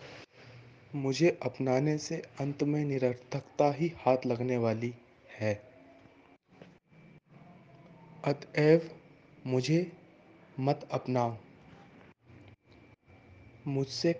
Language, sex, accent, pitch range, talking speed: Hindi, male, native, 120-150 Hz, 70 wpm